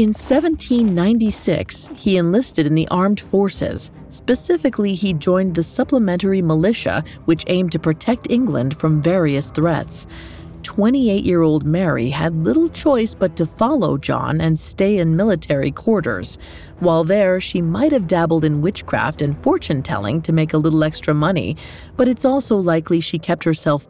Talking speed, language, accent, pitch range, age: 150 wpm, English, American, 155-215 Hz, 40-59